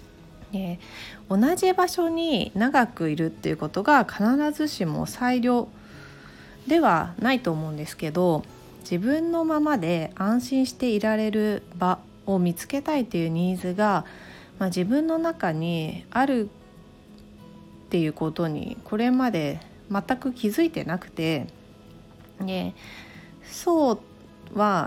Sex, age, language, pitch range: female, 30-49, Japanese, 170-260 Hz